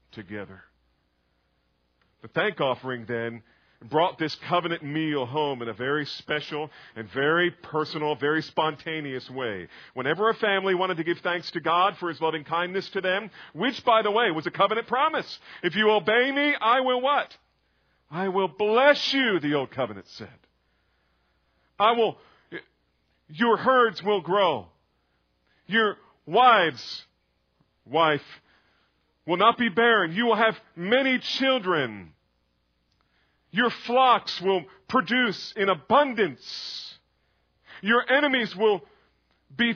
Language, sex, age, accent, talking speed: English, male, 50-69, American, 130 wpm